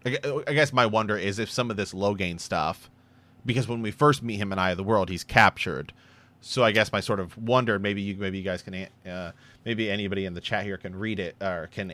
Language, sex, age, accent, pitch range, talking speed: English, male, 30-49, American, 95-125 Hz, 245 wpm